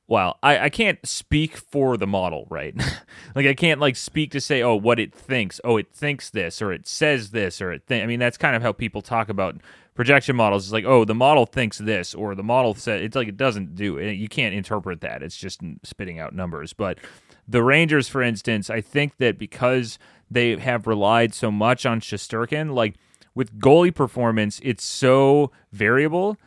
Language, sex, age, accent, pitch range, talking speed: English, male, 30-49, American, 105-135 Hz, 210 wpm